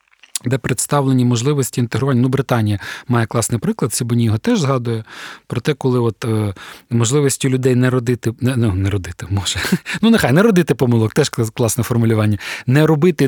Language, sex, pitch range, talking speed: Ukrainian, male, 120-160 Hz, 165 wpm